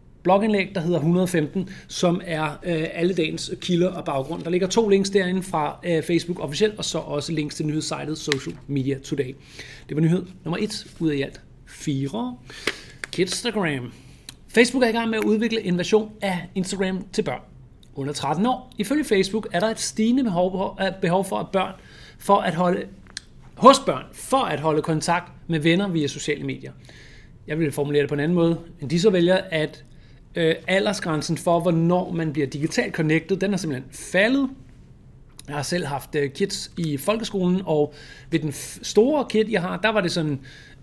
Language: Danish